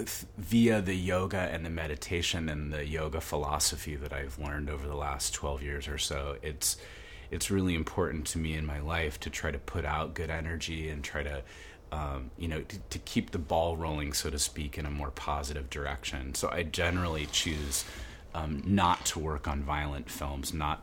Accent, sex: American, male